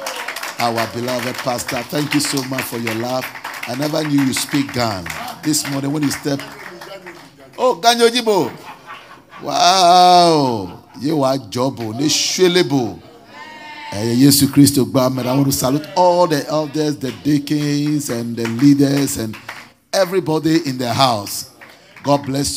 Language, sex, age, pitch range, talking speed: English, male, 50-69, 110-145 Hz, 135 wpm